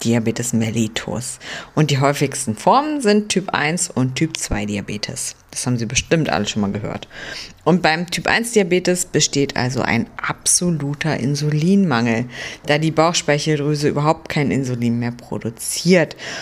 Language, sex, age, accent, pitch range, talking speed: German, female, 50-69, German, 130-190 Hz, 145 wpm